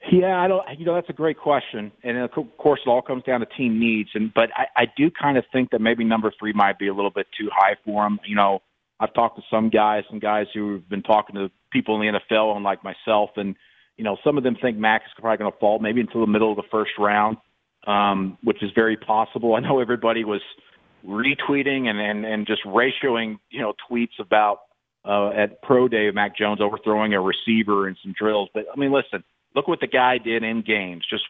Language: English